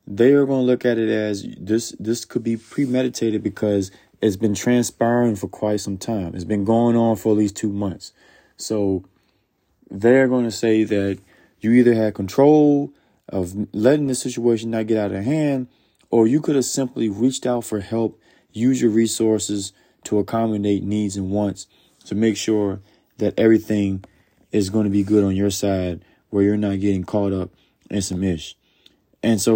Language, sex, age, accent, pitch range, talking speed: English, male, 20-39, American, 100-120 Hz, 185 wpm